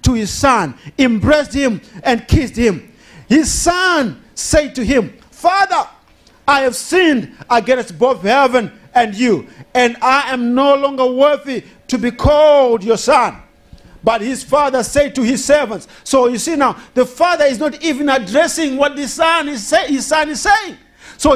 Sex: male